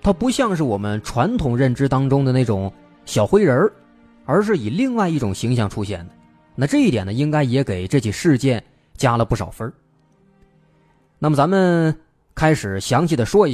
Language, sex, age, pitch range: Chinese, male, 20-39, 105-165 Hz